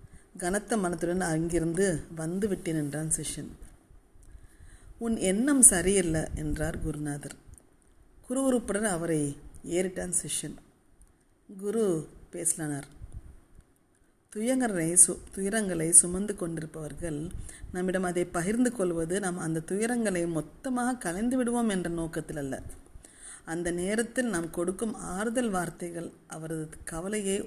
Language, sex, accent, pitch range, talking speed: Tamil, female, native, 160-205 Hz, 100 wpm